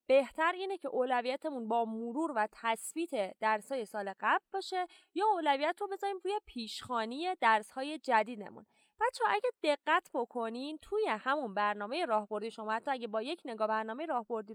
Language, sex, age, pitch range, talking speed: Persian, female, 20-39, 230-330 Hz, 155 wpm